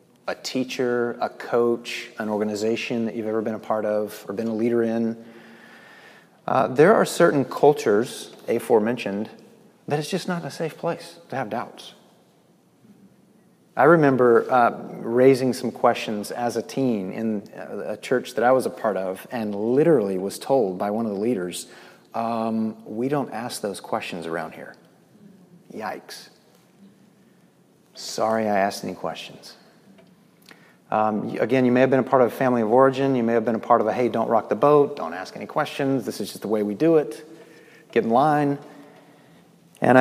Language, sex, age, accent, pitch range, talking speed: English, male, 30-49, American, 115-150 Hz, 175 wpm